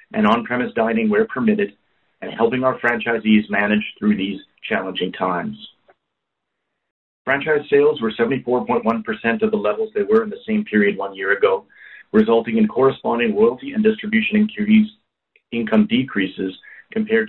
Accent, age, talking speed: American, 40-59, 135 wpm